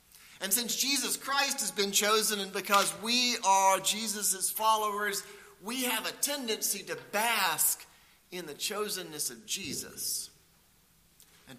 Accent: American